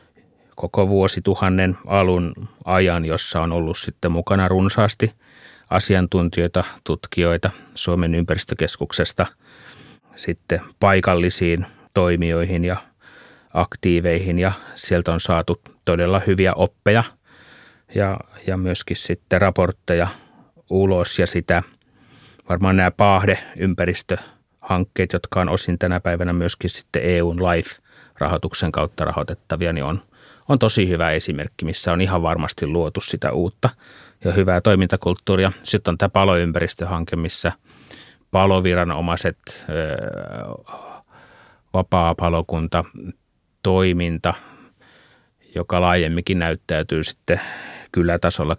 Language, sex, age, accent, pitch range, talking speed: Finnish, male, 30-49, native, 85-95 Hz, 95 wpm